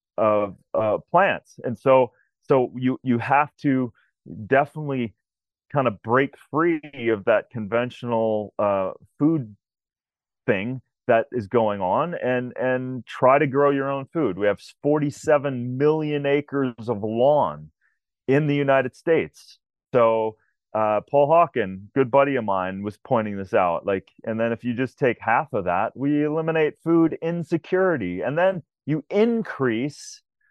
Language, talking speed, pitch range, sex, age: English, 150 wpm, 115-145 Hz, male, 30-49